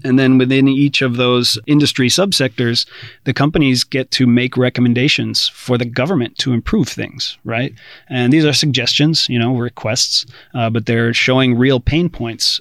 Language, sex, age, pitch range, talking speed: English, male, 30-49, 115-130 Hz, 165 wpm